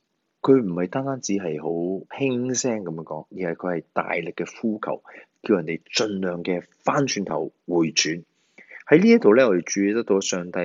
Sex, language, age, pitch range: male, Chinese, 30-49, 80-115 Hz